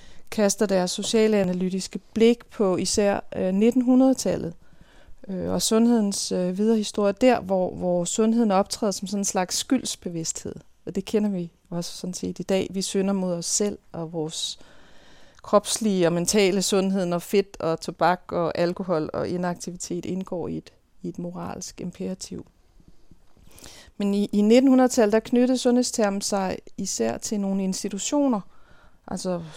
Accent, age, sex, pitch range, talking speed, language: native, 30-49, female, 175-205 Hz, 145 wpm, Danish